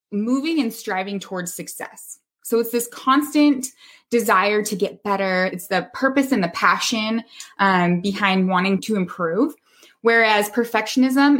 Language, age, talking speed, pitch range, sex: English, 20-39, 135 wpm, 180-225 Hz, female